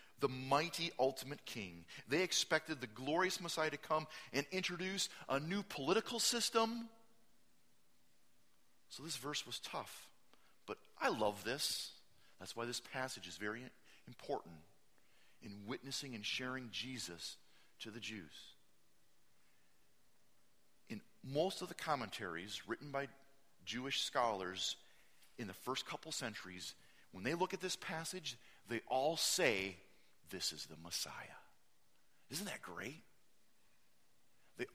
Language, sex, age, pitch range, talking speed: English, male, 40-59, 105-170 Hz, 125 wpm